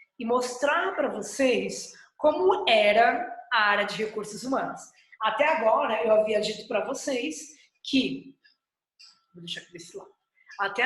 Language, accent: Portuguese, Brazilian